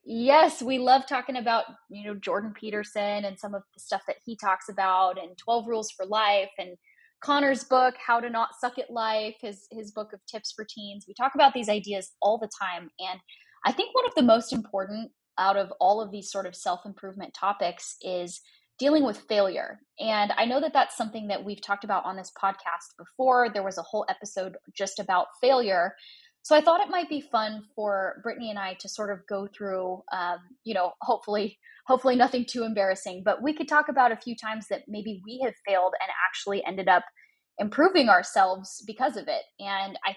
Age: 10-29